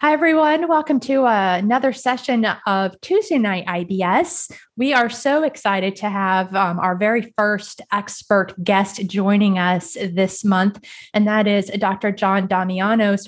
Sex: female